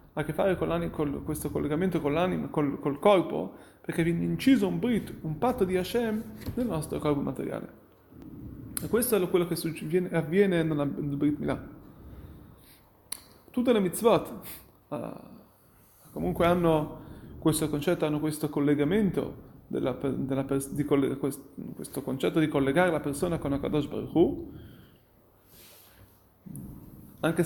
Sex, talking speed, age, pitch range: male, 135 wpm, 30-49, 145-180 Hz